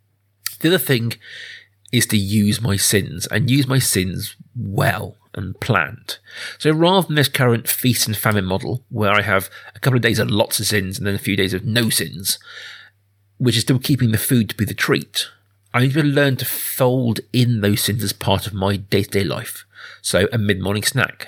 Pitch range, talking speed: 100-125 Hz, 205 wpm